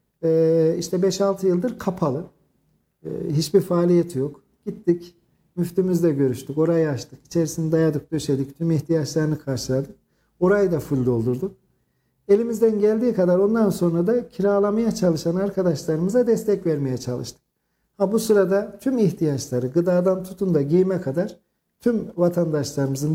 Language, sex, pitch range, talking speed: Turkish, male, 155-190 Hz, 120 wpm